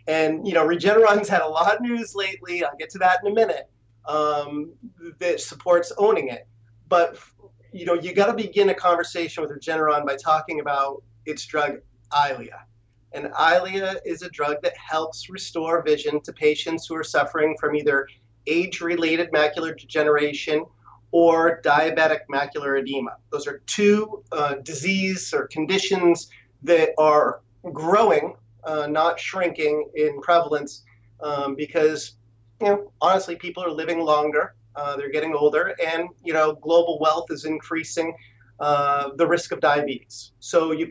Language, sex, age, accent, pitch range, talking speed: English, male, 30-49, American, 140-175 Hz, 155 wpm